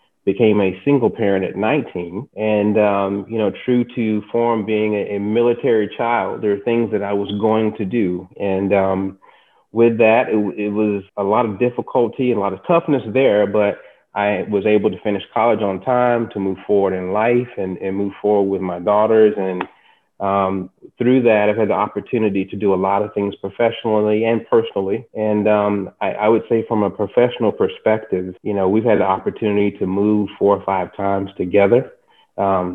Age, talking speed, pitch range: 30-49, 195 wpm, 100-110 Hz